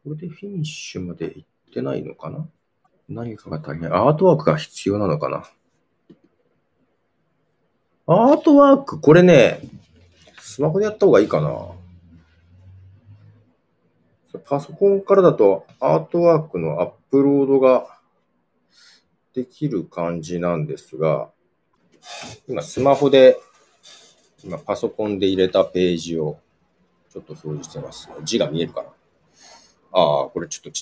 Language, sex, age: Japanese, male, 40-59